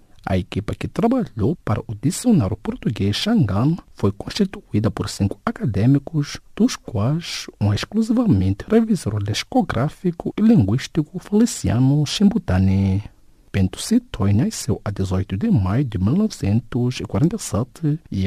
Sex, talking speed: male, 110 wpm